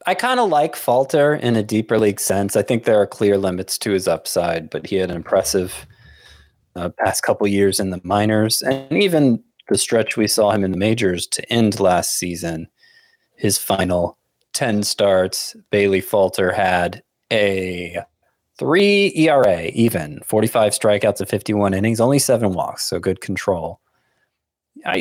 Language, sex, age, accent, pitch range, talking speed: English, male, 30-49, American, 95-120 Hz, 165 wpm